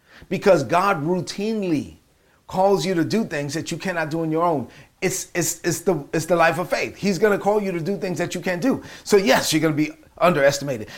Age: 40-59